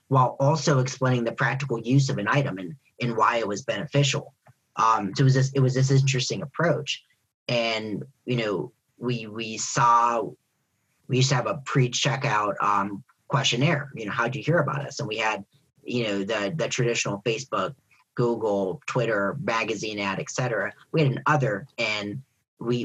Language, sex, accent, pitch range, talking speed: English, male, American, 115-140 Hz, 175 wpm